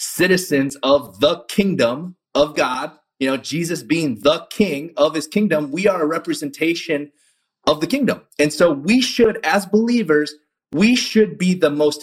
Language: English